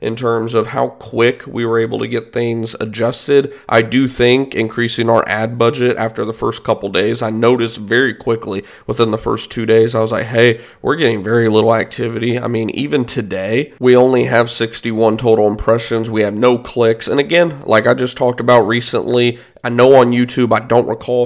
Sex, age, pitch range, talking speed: male, 40-59, 115-125 Hz, 200 wpm